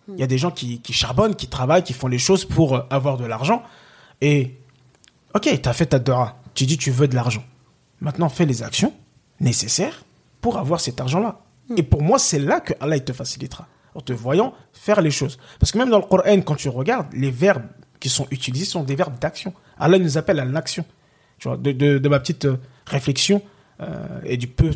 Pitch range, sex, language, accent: 130-175 Hz, male, French, French